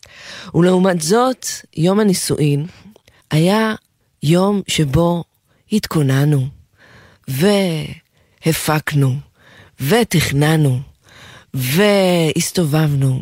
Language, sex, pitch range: Hebrew, female, 140-180 Hz